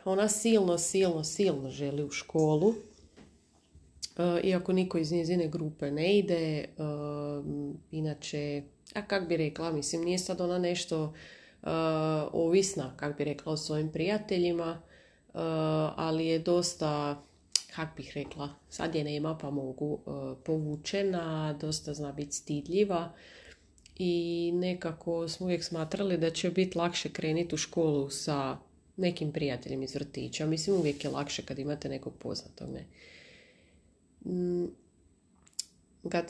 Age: 30-49